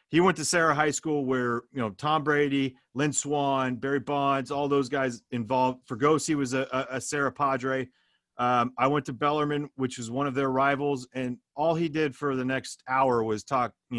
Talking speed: 200 wpm